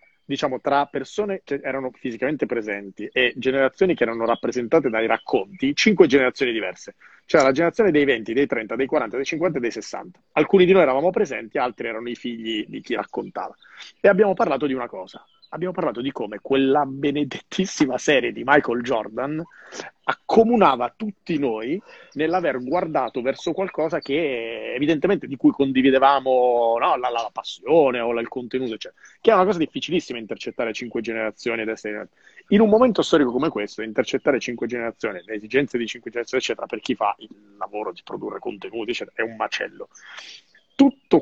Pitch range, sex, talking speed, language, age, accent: 125-185 Hz, male, 170 wpm, Italian, 30-49, native